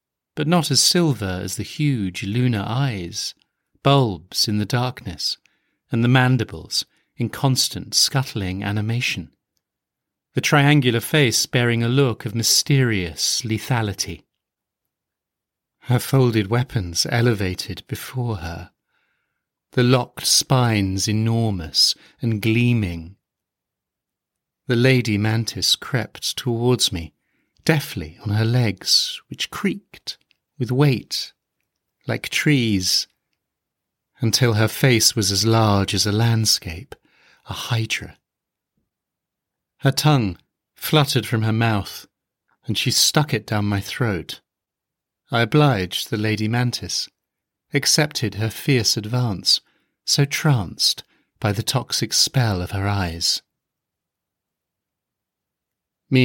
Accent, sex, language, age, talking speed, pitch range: British, male, English, 40-59, 105 wpm, 100-130 Hz